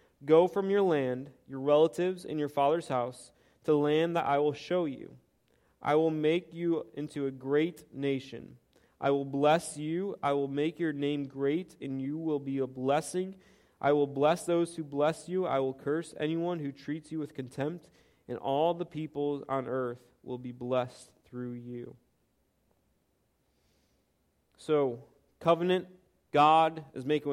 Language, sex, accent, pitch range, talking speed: English, male, American, 125-160 Hz, 160 wpm